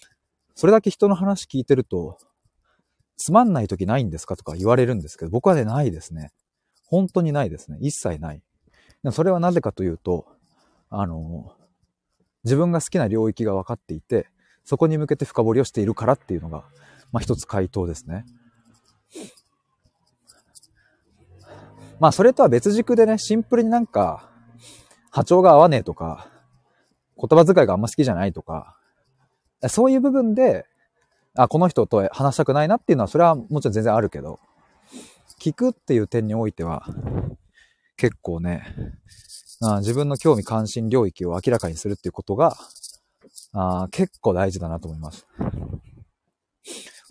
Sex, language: male, Japanese